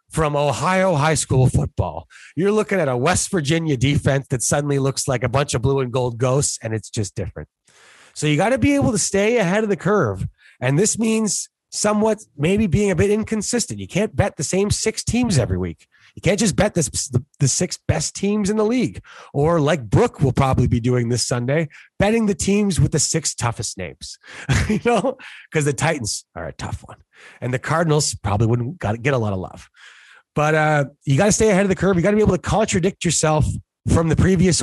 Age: 30-49